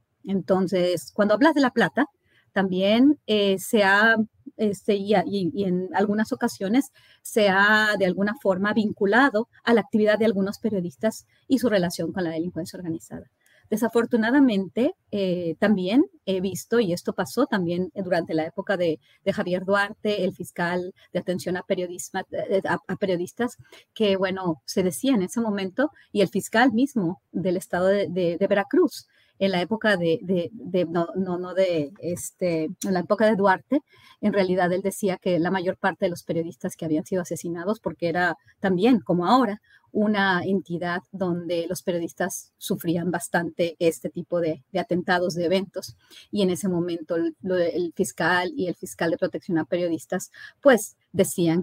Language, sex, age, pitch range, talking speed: Spanish, female, 30-49, 175-210 Hz, 155 wpm